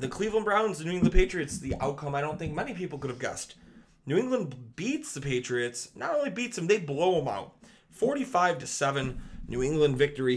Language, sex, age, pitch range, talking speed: English, male, 30-49, 135-175 Hz, 205 wpm